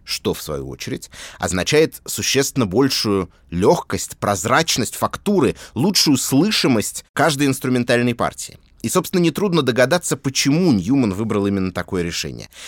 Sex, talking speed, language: male, 120 wpm, Russian